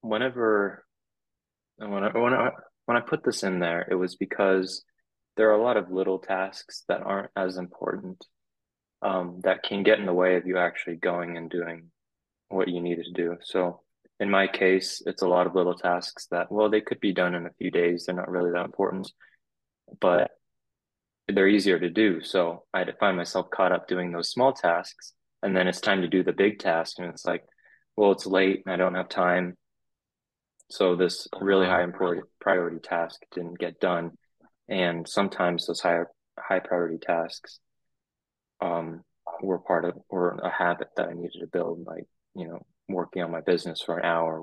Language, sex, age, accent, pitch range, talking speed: English, male, 20-39, American, 85-95 Hz, 195 wpm